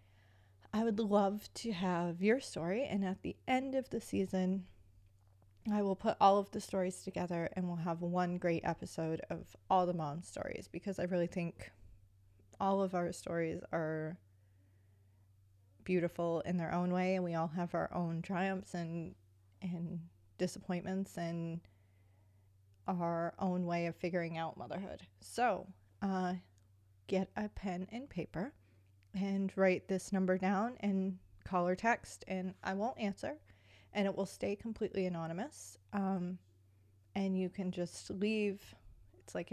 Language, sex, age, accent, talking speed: English, female, 30-49, American, 150 wpm